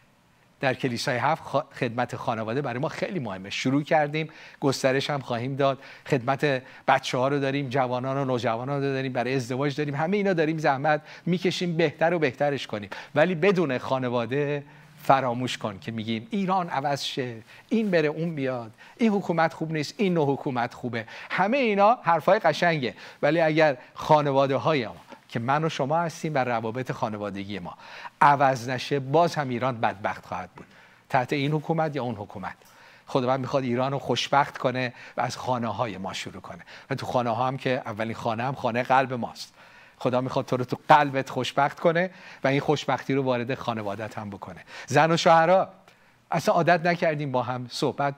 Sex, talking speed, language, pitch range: male, 175 wpm, Persian, 125-155 Hz